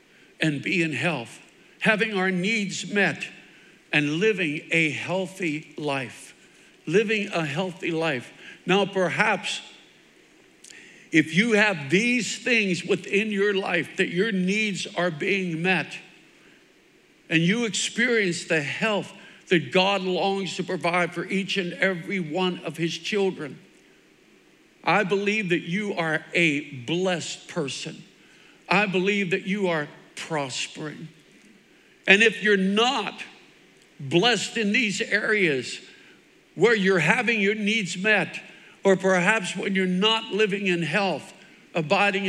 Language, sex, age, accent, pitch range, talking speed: English, male, 60-79, American, 180-220 Hz, 125 wpm